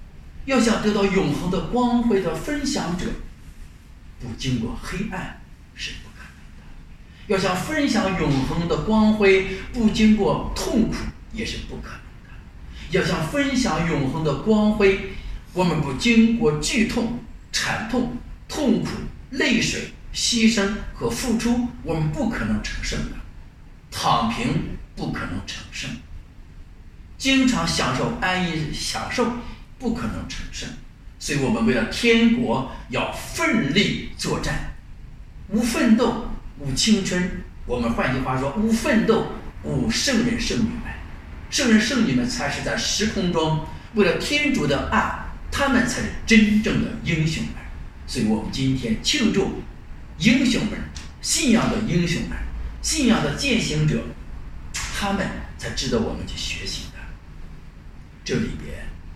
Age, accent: 50-69, Chinese